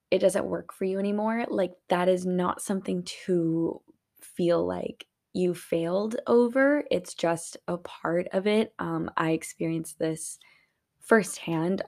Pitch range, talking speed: 165-185 Hz, 140 wpm